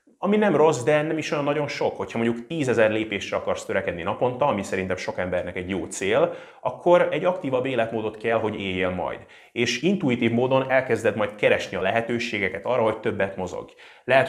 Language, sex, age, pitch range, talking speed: Hungarian, male, 30-49, 105-140 Hz, 185 wpm